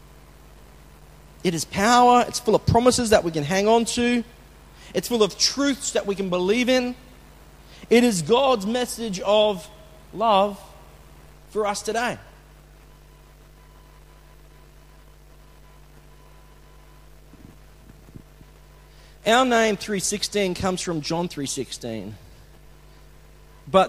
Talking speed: 100 wpm